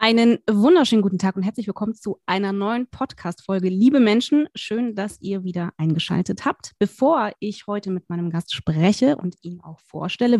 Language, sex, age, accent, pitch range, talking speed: German, female, 20-39, German, 185-240 Hz, 175 wpm